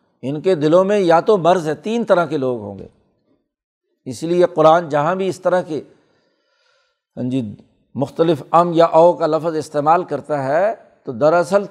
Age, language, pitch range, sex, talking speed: 60-79, Urdu, 150-195 Hz, male, 180 wpm